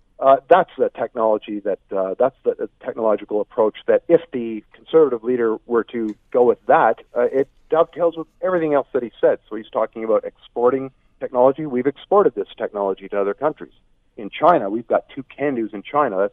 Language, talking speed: English, 190 wpm